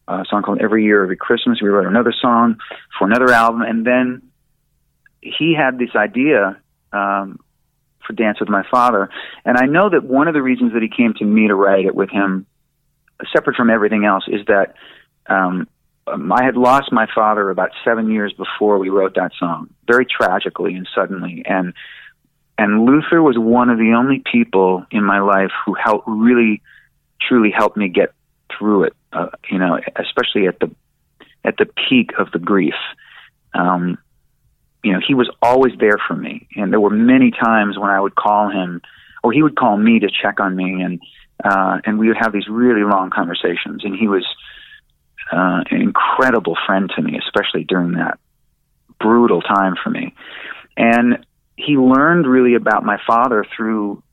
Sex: male